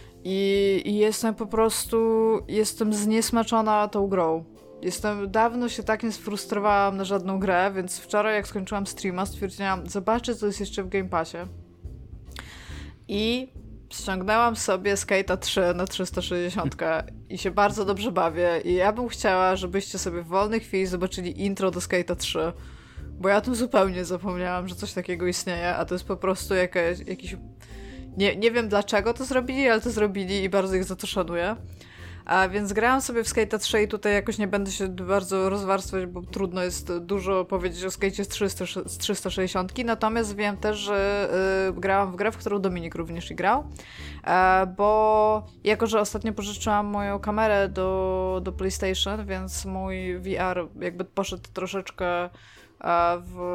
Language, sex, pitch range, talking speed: Polish, female, 180-210 Hz, 160 wpm